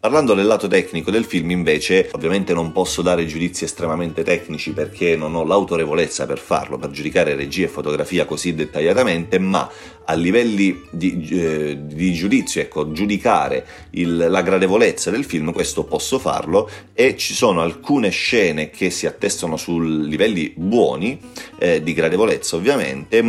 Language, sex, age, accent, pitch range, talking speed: Italian, male, 30-49, native, 80-95 Hz, 150 wpm